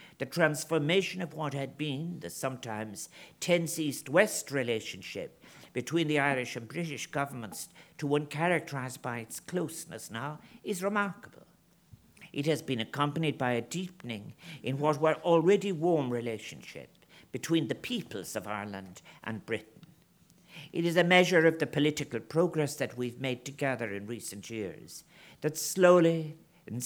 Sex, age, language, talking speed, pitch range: male, 50-69, English, 145 wpm, 130-170 Hz